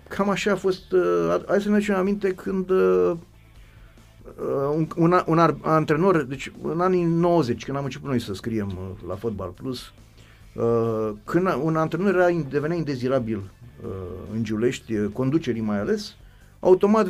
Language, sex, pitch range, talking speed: Romanian, male, 110-170 Hz, 170 wpm